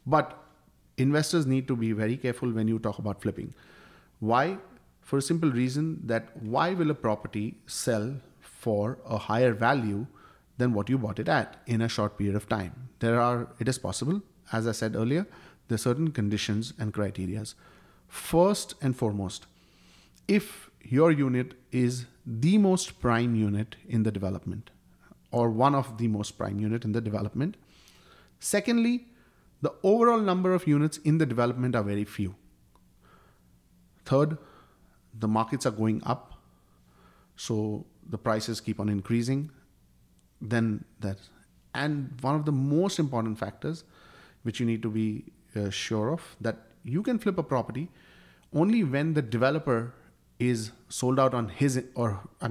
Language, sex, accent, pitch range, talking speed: English, male, Indian, 105-145 Hz, 155 wpm